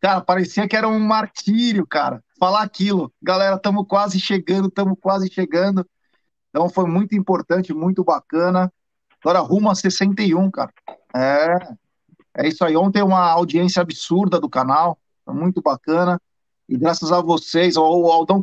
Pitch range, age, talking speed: 175-205 Hz, 50-69, 150 wpm